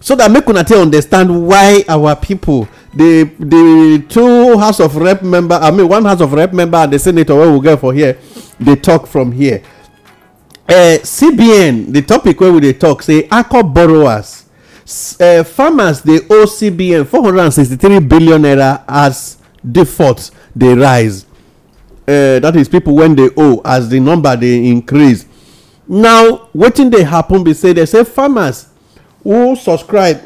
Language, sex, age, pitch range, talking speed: English, male, 50-69, 130-180 Hz, 165 wpm